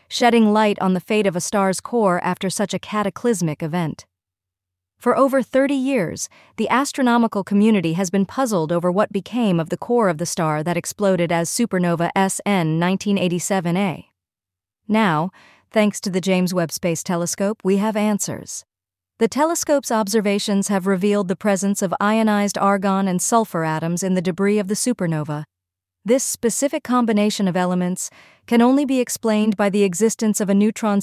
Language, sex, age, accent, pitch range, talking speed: English, female, 40-59, American, 175-220 Hz, 160 wpm